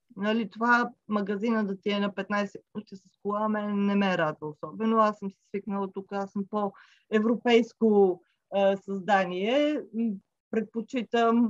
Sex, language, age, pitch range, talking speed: female, Bulgarian, 30-49, 195-250 Hz, 145 wpm